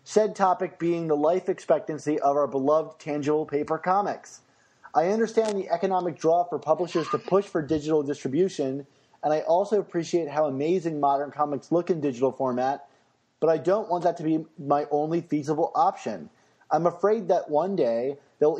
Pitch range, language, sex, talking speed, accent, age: 140-175 Hz, English, male, 170 wpm, American, 30-49